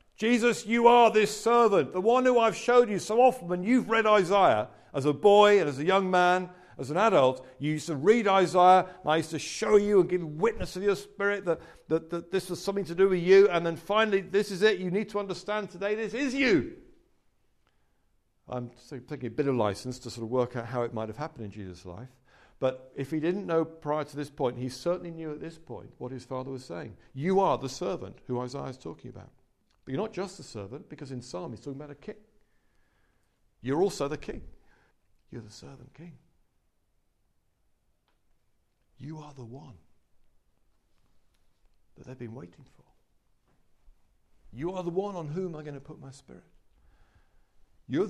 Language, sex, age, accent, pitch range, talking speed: English, male, 50-69, British, 125-195 Hz, 200 wpm